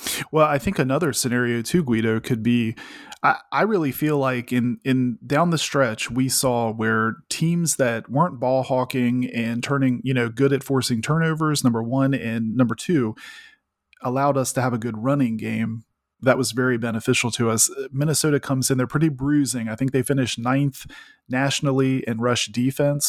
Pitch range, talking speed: 115-140 Hz, 180 wpm